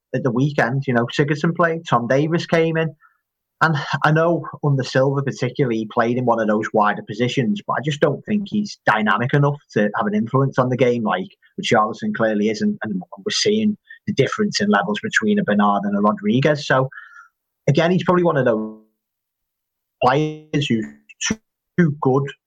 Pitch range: 110-155 Hz